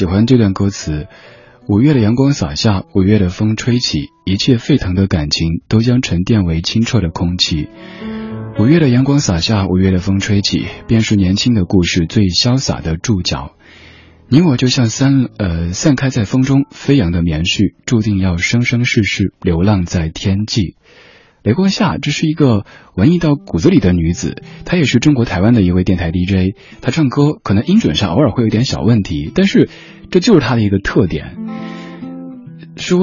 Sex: male